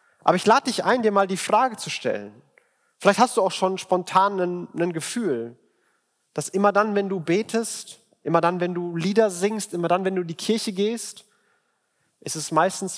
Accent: German